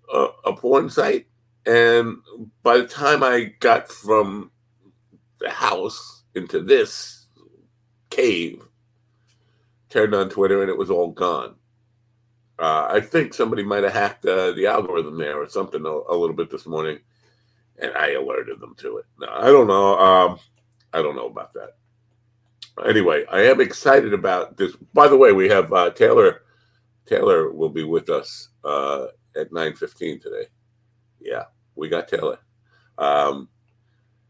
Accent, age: American, 50-69